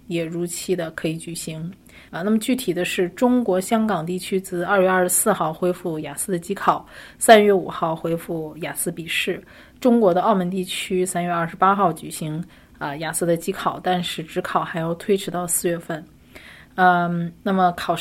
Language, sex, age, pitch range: Chinese, female, 20-39, 170-190 Hz